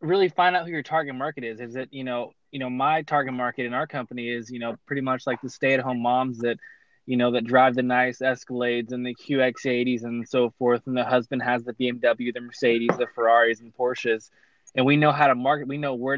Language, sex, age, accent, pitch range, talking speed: English, male, 20-39, American, 125-145 Hz, 245 wpm